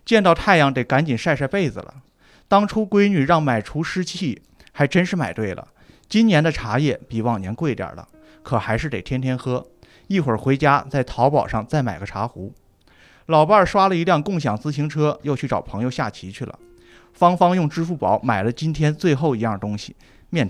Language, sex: Chinese, male